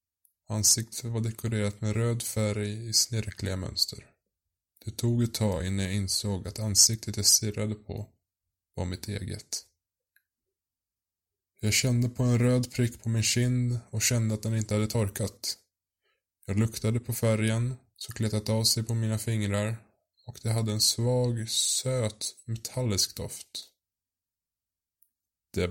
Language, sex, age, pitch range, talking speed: Swedish, male, 20-39, 100-115 Hz, 140 wpm